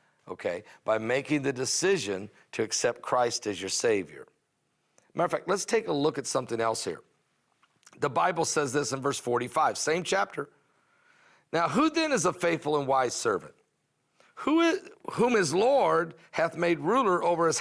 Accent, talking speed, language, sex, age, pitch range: American, 165 wpm, English, male, 50-69, 145-190 Hz